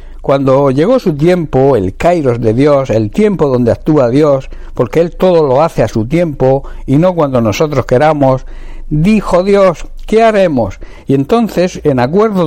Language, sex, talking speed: Spanish, male, 165 wpm